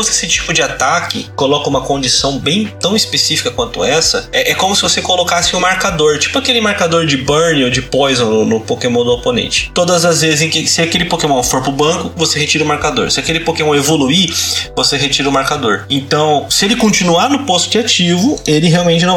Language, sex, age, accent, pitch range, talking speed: Portuguese, male, 20-39, Brazilian, 140-180 Hz, 210 wpm